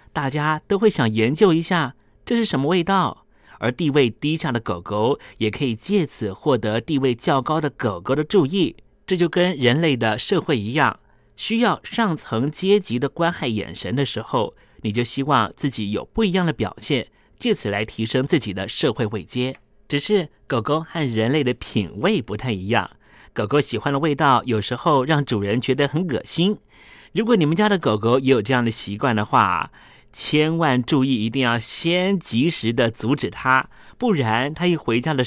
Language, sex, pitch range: Chinese, male, 115-160 Hz